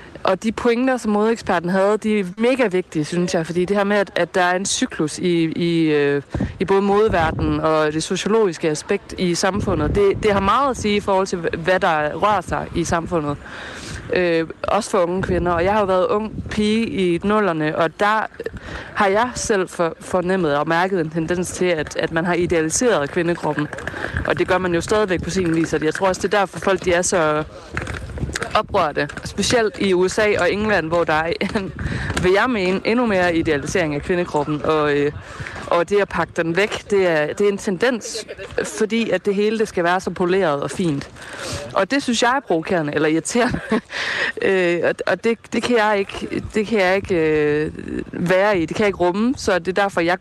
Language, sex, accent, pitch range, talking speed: Danish, female, native, 165-205 Hz, 210 wpm